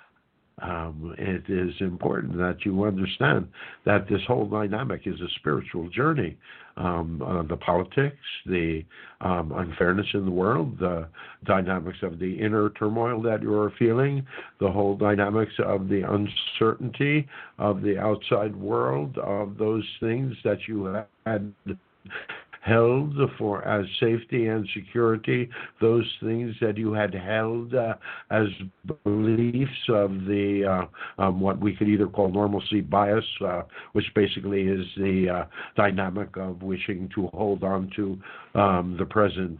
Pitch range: 95-110 Hz